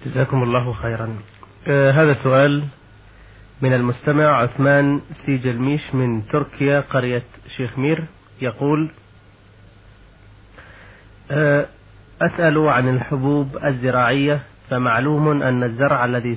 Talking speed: 90 wpm